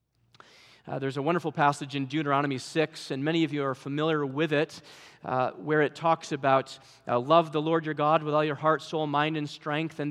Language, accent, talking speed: English, American, 215 wpm